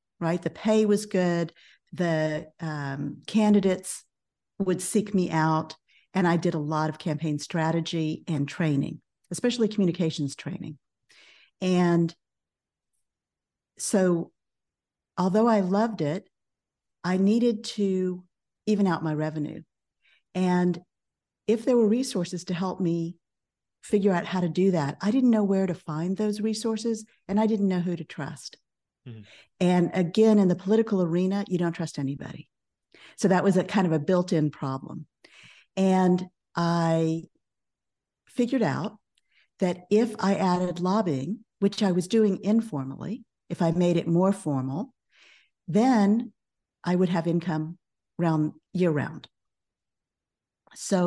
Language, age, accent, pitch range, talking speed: English, 50-69, American, 165-200 Hz, 135 wpm